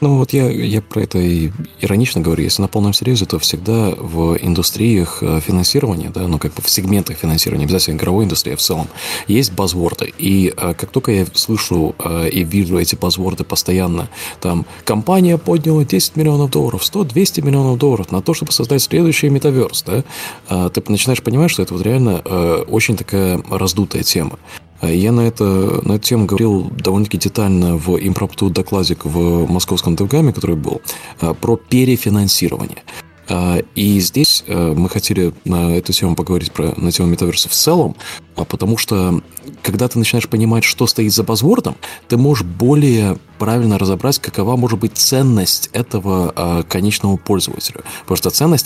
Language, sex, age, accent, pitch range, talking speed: Russian, male, 20-39, native, 90-120 Hz, 160 wpm